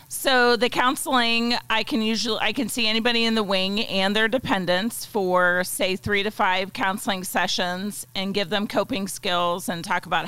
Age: 40-59